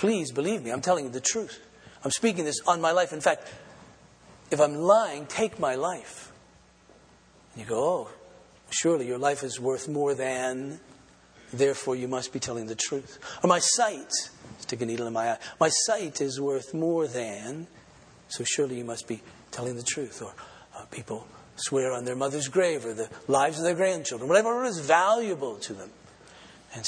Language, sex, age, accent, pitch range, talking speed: English, male, 40-59, American, 125-175 Hz, 185 wpm